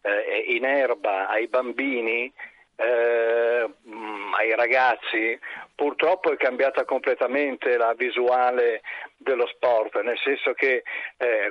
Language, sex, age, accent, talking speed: Italian, male, 50-69, native, 100 wpm